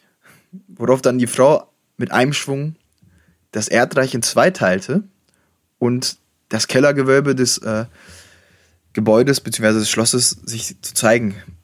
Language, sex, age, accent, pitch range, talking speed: German, male, 20-39, German, 110-140 Hz, 125 wpm